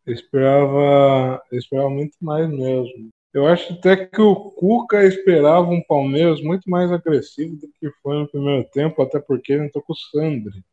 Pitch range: 125-155 Hz